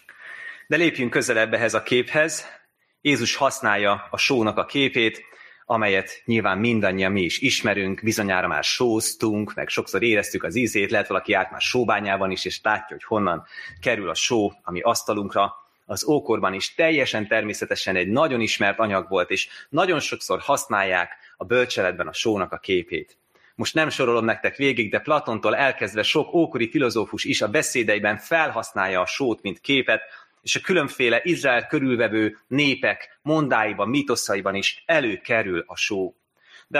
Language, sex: Hungarian, male